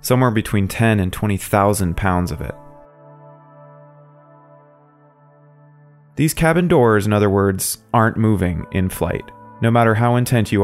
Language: English